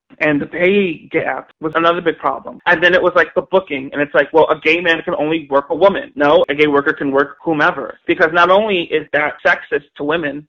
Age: 20-39